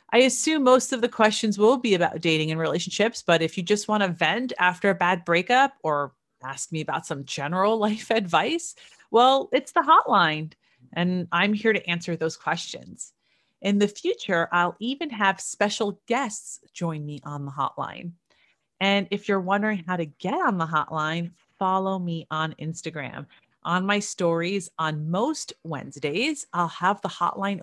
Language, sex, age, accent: English, female, 30-49, American